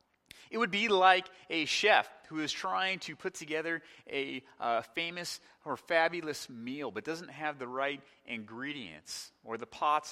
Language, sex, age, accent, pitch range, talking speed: English, male, 30-49, American, 115-150 Hz, 160 wpm